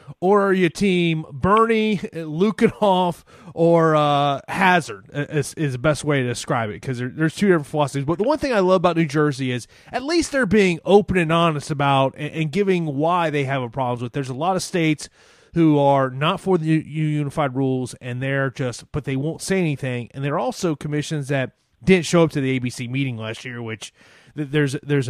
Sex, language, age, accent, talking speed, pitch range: male, English, 30-49, American, 210 wpm, 130-170 Hz